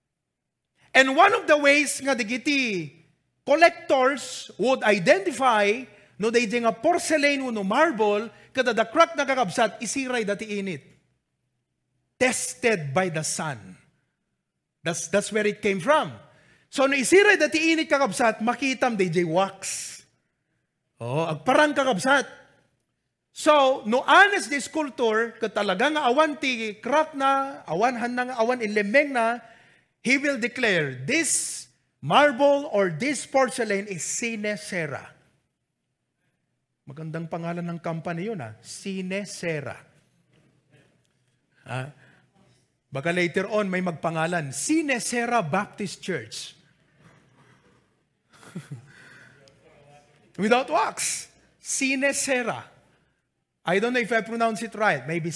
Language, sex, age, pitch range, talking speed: English, male, 30-49, 175-265 Hz, 105 wpm